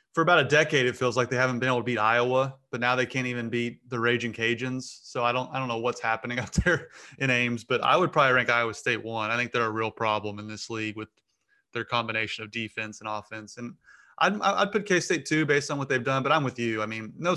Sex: male